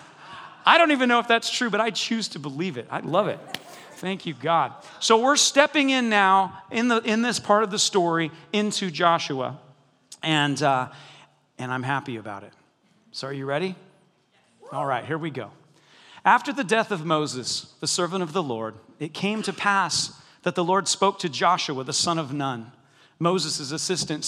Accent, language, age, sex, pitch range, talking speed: American, English, 40-59, male, 140-200 Hz, 190 wpm